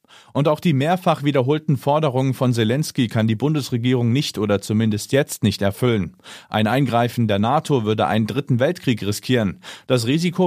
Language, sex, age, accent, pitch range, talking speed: German, male, 40-59, German, 110-140 Hz, 160 wpm